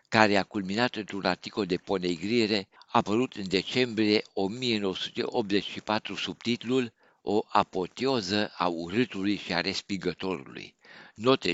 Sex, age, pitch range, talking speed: male, 60-79, 95-120 Hz, 110 wpm